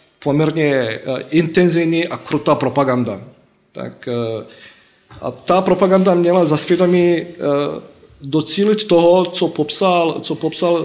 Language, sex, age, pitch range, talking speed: Slovak, male, 40-59, 140-175 Hz, 100 wpm